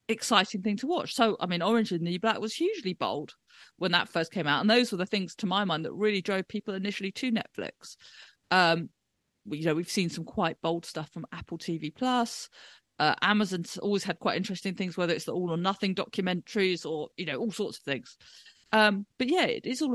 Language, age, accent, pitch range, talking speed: English, 40-59, British, 175-215 Hz, 230 wpm